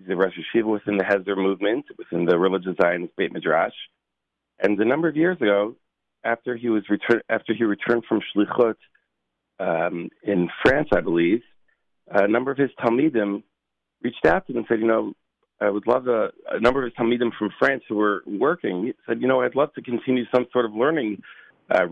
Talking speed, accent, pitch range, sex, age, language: 195 wpm, American, 100-125 Hz, male, 40-59, English